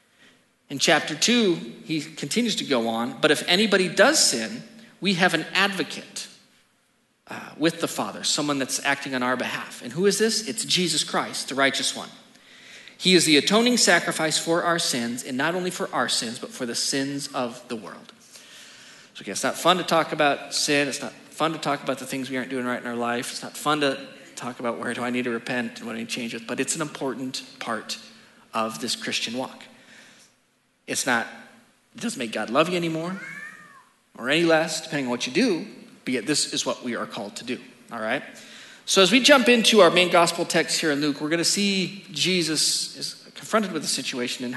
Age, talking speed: 40-59, 215 wpm